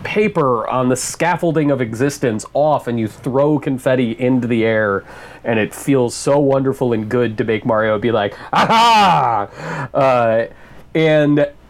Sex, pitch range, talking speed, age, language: male, 115-155 Hz, 150 wpm, 30-49, English